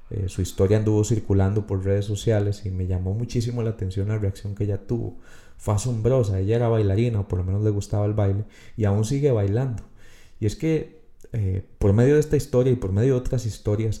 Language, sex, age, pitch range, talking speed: Spanish, male, 30-49, 100-125 Hz, 220 wpm